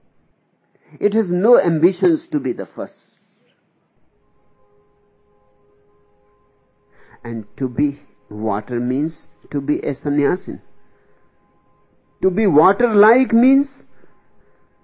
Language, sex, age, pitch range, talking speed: Hindi, male, 60-79, 115-195 Hz, 85 wpm